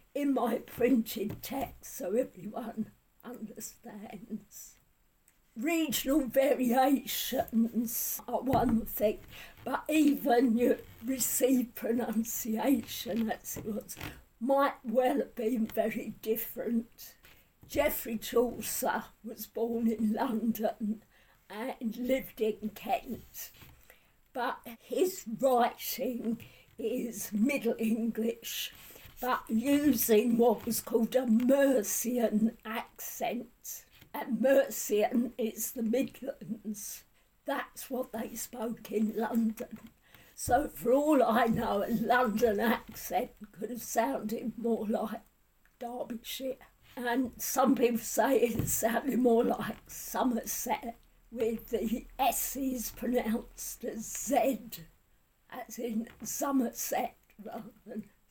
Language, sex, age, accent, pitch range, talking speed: English, female, 50-69, British, 225-250 Hz, 100 wpm